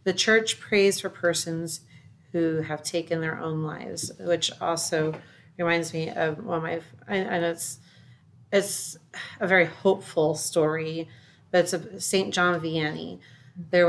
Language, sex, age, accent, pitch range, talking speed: English, female, 30-49, American, 160-185 Hz, 140 wpm